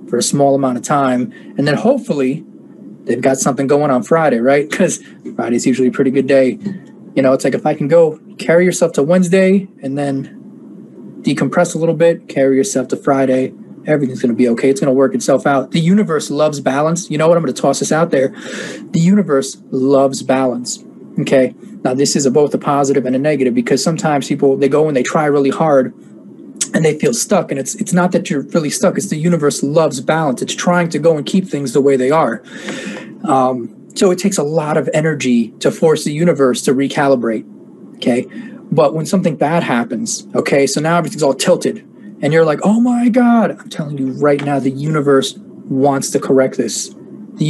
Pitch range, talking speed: 135-175 Hz, 210 wpm